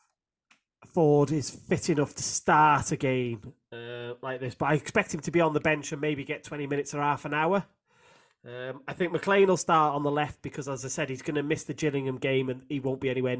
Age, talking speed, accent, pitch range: 30-49, 240 wpm, British, 130-160 Hz